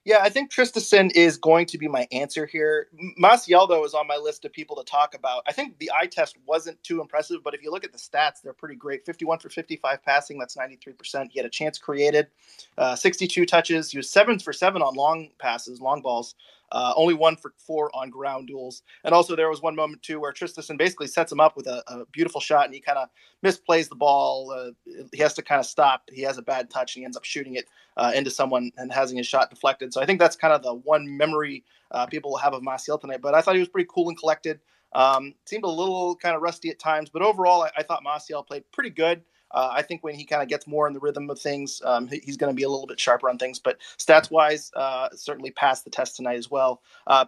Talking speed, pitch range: 255 wpm, 130-165 Hz